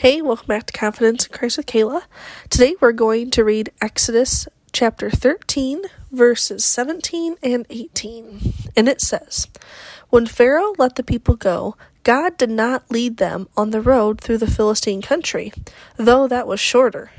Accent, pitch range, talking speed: American, 215-265 Hz, 160 wpm